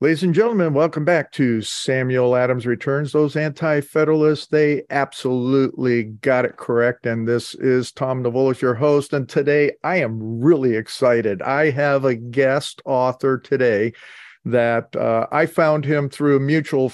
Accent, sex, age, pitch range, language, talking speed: American, male, 50-69, 125-155 Hz, English, 150 wpm